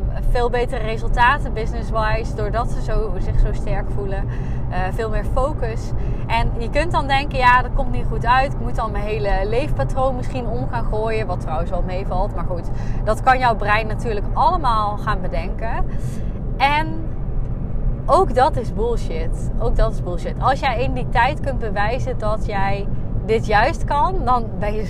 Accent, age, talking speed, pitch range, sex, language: Dutch, 20-39, 175 wpm, 115-130 Hz, female, Dutch